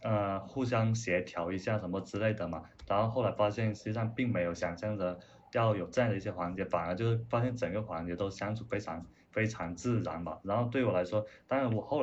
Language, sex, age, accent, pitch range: Chinese, male, 20-39, native, 95-115 Hz